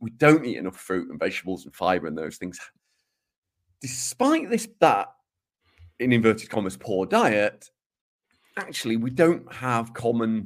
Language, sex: English, male